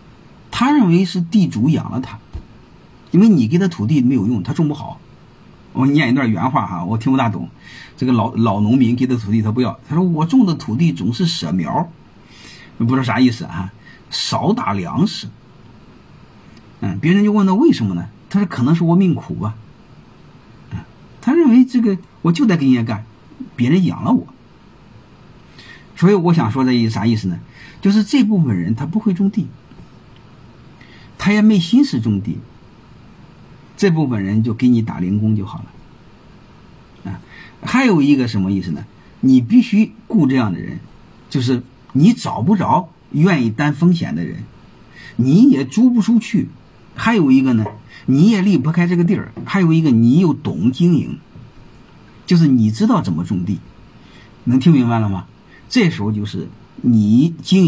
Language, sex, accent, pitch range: Chinese, male, native, 115-185 Hz